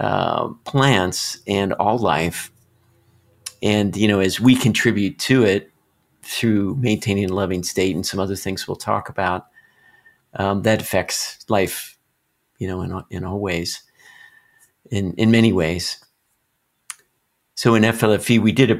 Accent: American